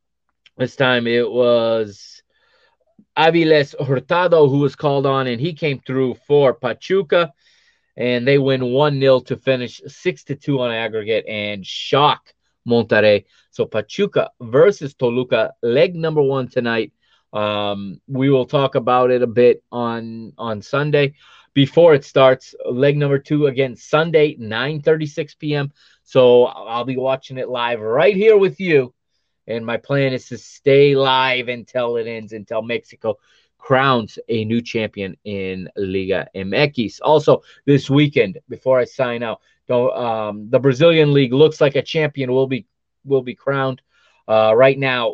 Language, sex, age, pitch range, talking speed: English, male, 30-49, 120-150 Hz, 145 wpm